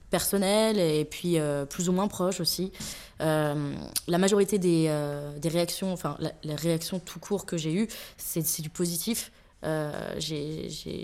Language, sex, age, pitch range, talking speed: French, female, 20-39, 155-185 Hz, 175 wpm